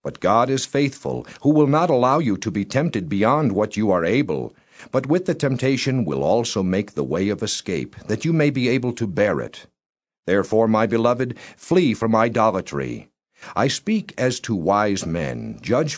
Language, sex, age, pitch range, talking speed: English, male, 50-69, 115-150 Hz, 185 wpm